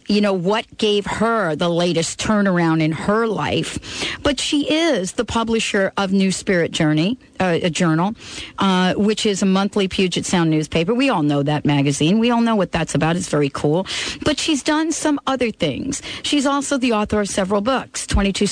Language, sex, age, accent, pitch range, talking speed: English, female, 40-59, American, 175-230 Hz, 190 wpm